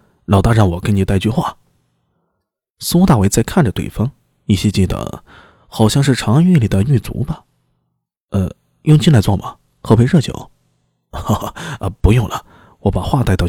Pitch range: 95-130 Hz